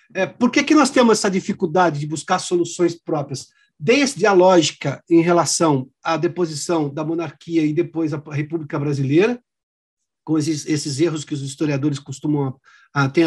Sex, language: male, Portuguese